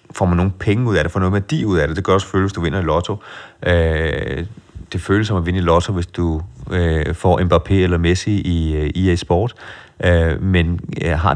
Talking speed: 205 wpm